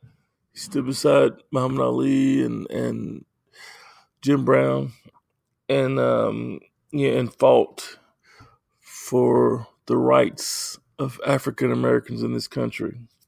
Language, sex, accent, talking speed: English, male, American, 105 wpm